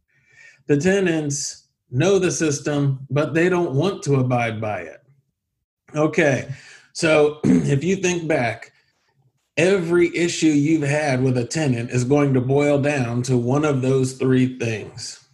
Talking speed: 145 wpm